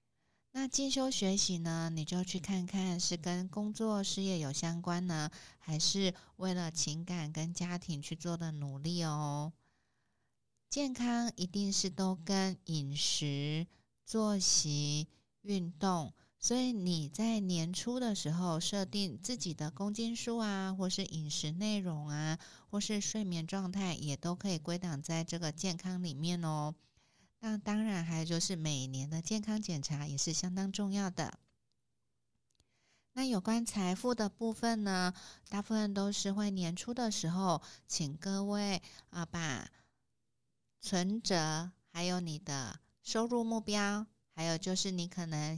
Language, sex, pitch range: Chinese, female, 160-200 Hz